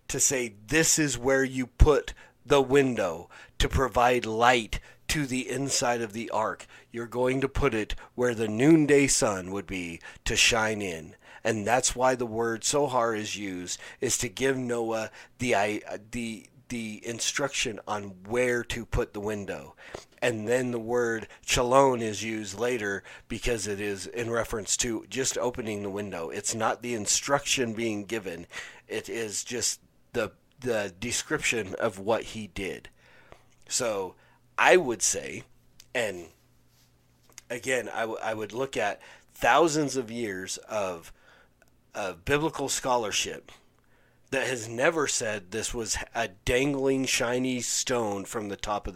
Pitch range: 105-130 Hz